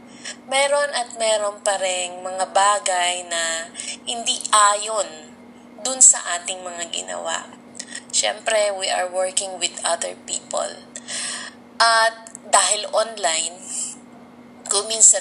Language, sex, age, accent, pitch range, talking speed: Filipino, female, 20-39, native, 185-245 Hz, 100 wpm